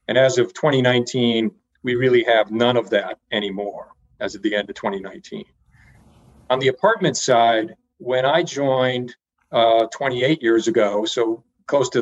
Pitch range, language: 110-130 Hz, English